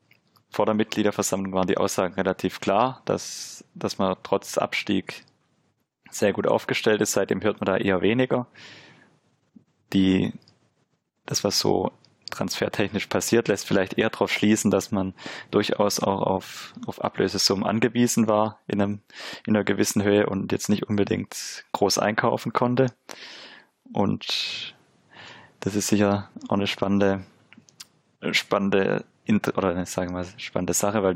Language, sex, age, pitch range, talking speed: German, male, 20-39, 95-105 Hz, 135 wpm